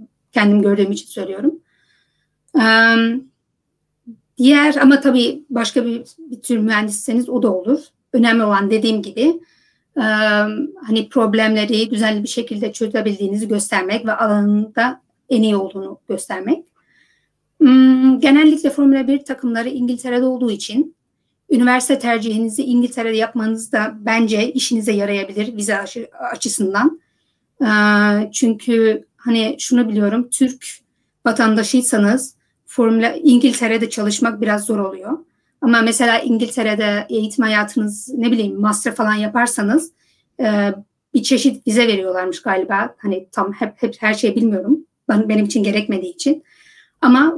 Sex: female